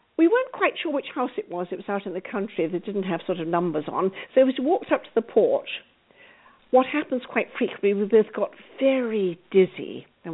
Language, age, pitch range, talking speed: English, 50-69, 200-300 Hz, 225 wpm